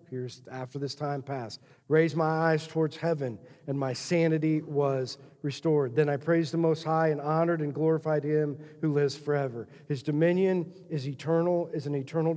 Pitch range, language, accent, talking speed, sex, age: 145-180 Hz, English, American, 175 wpm, male, 40-59